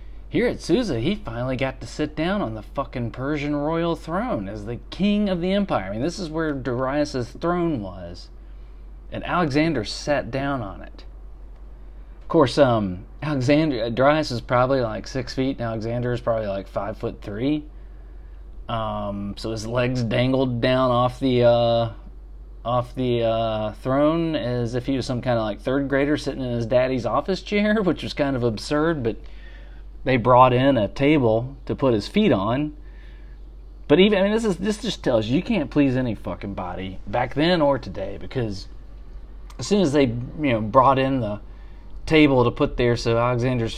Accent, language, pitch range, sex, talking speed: American, English, 105-145 Hz, male, 185 wpm